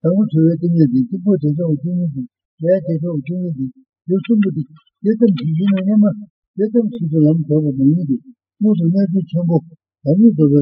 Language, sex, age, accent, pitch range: Italian, male, 60-79, Indian, 155-205 Hz